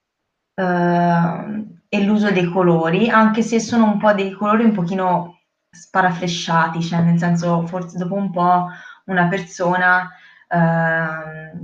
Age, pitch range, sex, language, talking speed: 20-39, 170-200 Hz, female, Italian, 130 wpm